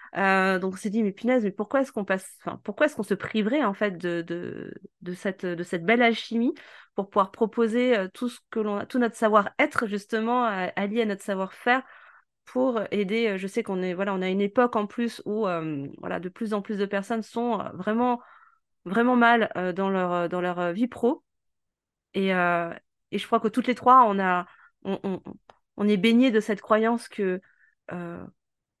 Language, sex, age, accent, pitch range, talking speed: French, female, 30-49, French, 195-235 Hz, 215 wpm